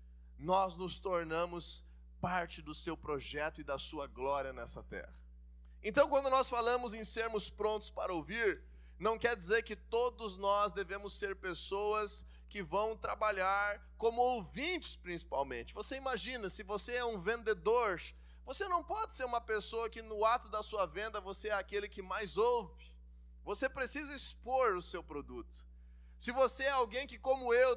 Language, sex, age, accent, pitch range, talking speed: Portuguese, male, 20-39, Brazilian, 170-250 Hz, 160 wpm